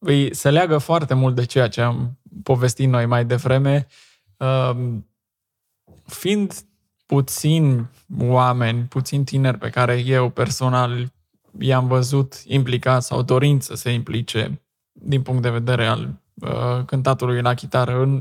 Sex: male